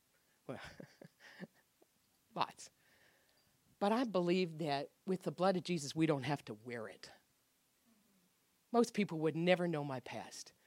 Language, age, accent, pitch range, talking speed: English, 50-69, American, 145-190 Hz, 130 wpm